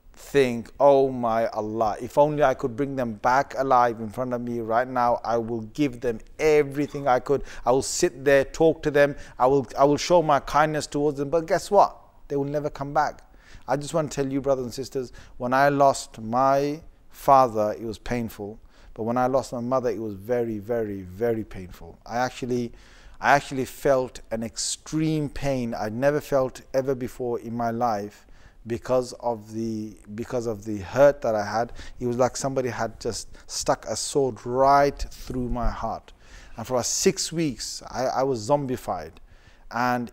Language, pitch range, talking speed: English, 110-140 Hz, 190 wpm